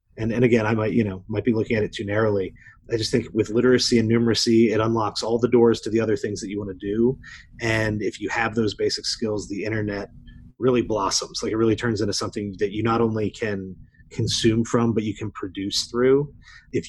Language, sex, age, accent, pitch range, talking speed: English, male, 30-49, American, 105-120 Hz, 230 wpm